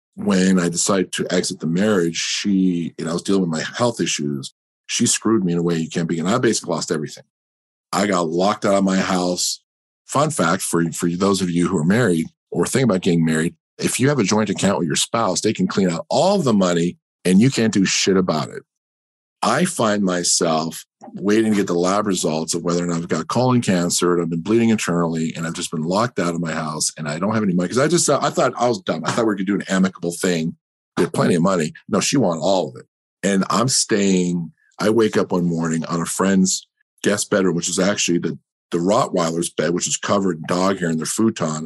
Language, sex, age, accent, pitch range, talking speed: English, male, 50-69, American, 80-95 Hz, 245 wpm